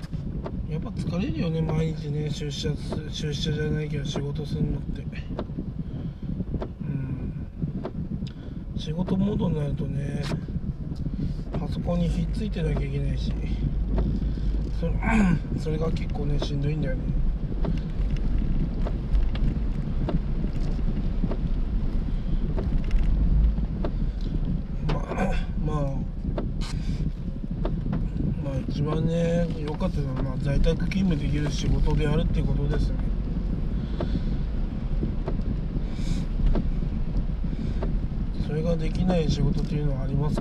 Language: Japanese